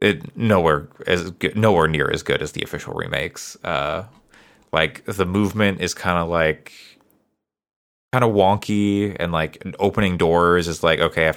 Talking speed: 170 wpm